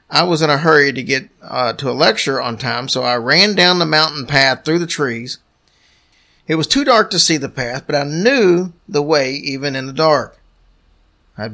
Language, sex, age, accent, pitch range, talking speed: English, male, 40-59, American, 135-165 Hz, 215 wpm